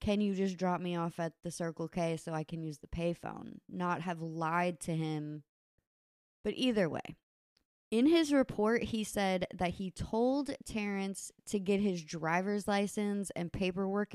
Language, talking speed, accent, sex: English, 170 wpm, American, female